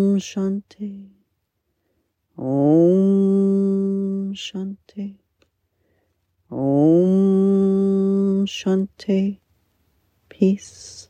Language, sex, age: English, female, 40-59